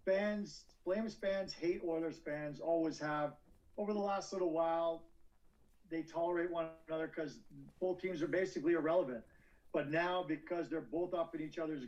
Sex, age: male, 50-69